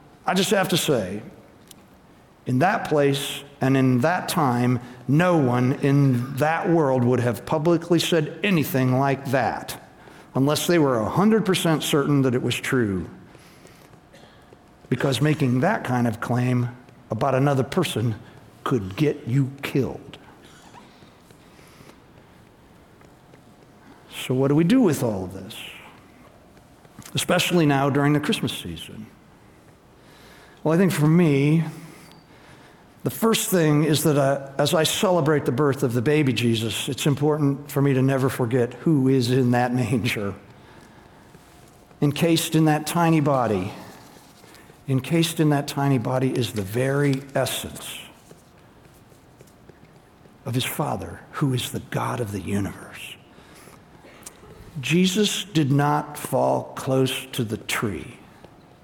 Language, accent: English, American